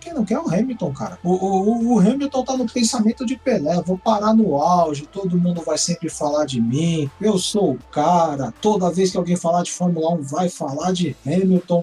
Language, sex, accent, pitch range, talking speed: Portuguese, male, Brazilian, 175-250 Hz, 220 wpm